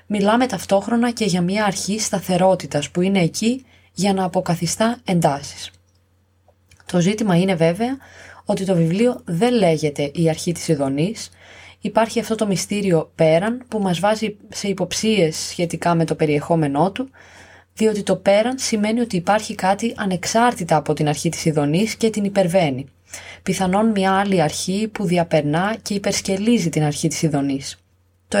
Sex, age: female, 20-39